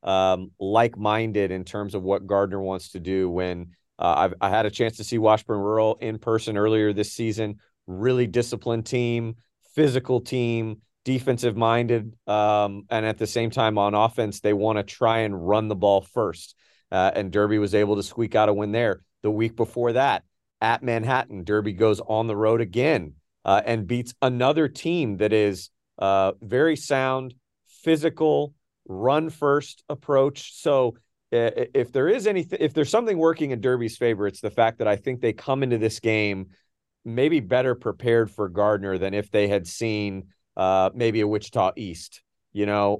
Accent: American